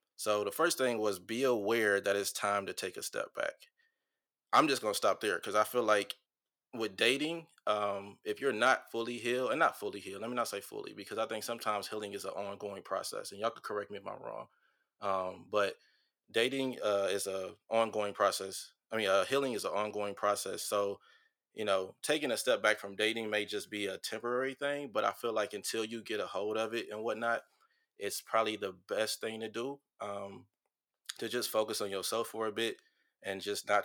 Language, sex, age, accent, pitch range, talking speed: English, male, 20-39, American, 100-135 Hz, 215 wpm